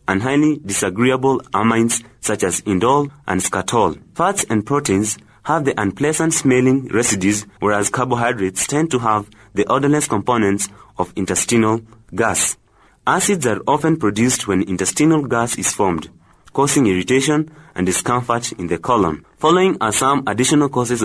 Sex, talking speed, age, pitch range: male, 140 wpm, 30-49, 105-140 Hz